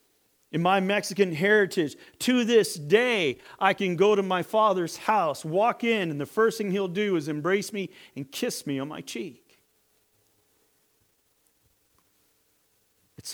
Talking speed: 145 wpm